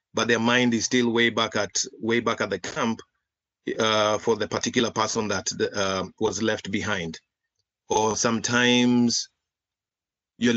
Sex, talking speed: male, 155 wpm